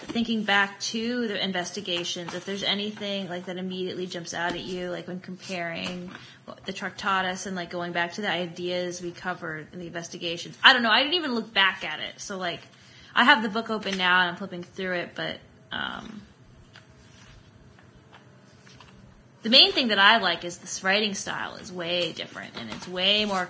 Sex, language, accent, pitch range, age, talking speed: female, English, American, 180-240 Hz, 20-39, 195 wpm